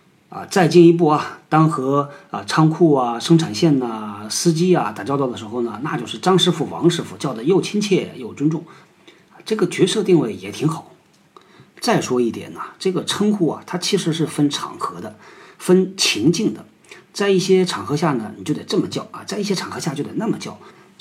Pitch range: 140-180 Hz